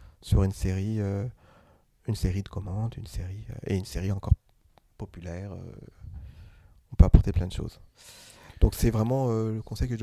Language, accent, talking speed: French, French, 180 wpm